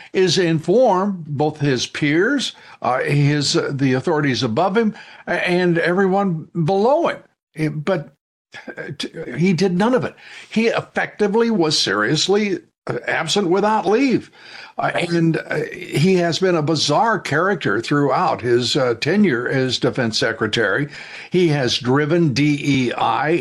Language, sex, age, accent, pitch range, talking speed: English, male, 60-79, American, 140-185 Hz, 125 wpm